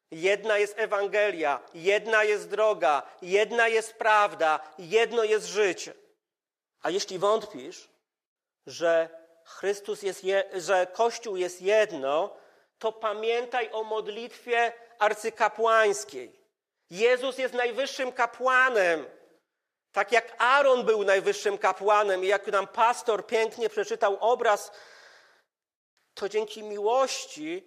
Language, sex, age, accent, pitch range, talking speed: Polish, male, 40-59, native, 180-235 Hz, 105 wpm